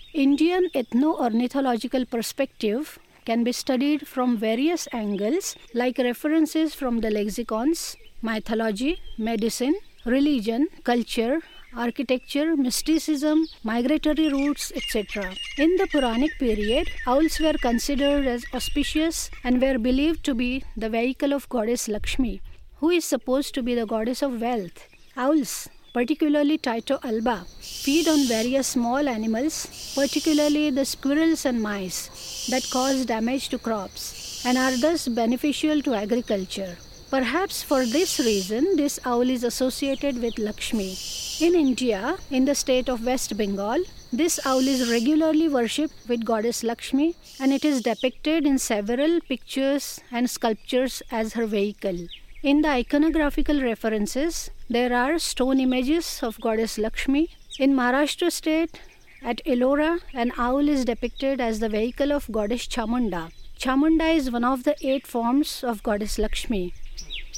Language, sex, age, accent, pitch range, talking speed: English, female, 50-69, Indian, 235-295 Hz, 135 wpm